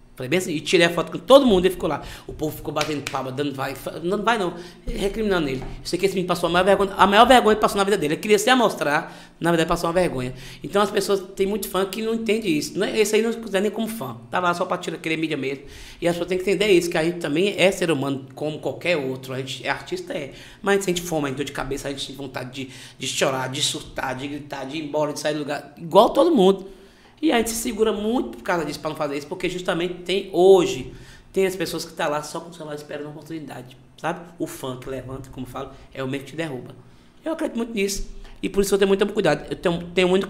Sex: male